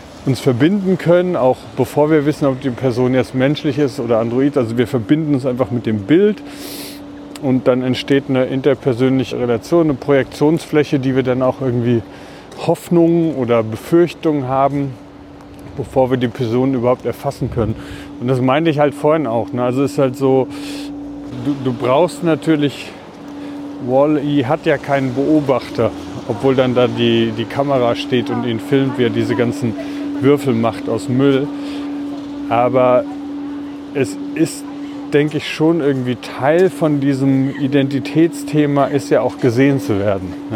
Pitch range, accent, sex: 120-155 Hz, German, male